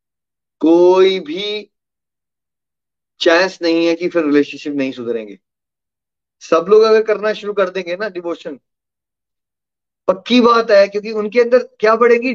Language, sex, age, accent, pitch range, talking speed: Hindi, male, 20-39, native, 155-235 Hz, 130 wpm